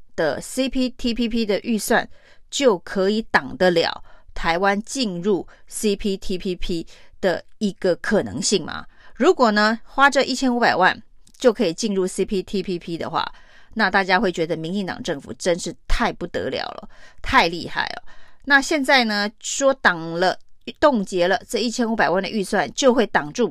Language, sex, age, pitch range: Chinese, female, 30-49, 185-235 Hz